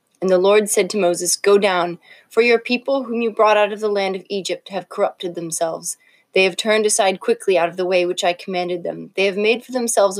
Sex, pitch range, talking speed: female, 175-210 Hz, 240 wpm